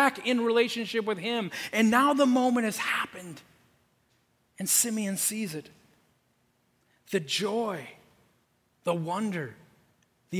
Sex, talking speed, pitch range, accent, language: male, 110 wpm, 155-215 Hz, American, English